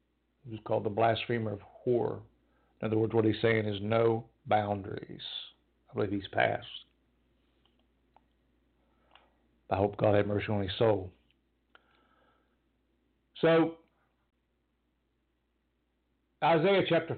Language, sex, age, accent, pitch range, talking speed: English, male, 60-79, American, 110-150 Hz, 105 wpm